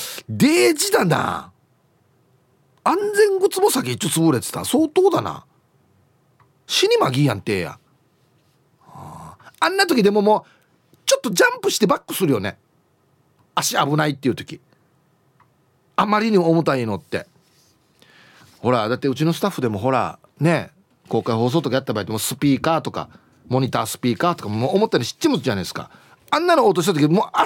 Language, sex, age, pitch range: Japanese, male, 40-59, 125-180 Hz